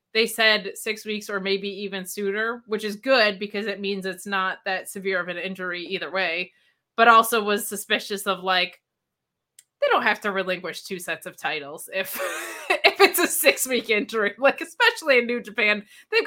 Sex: female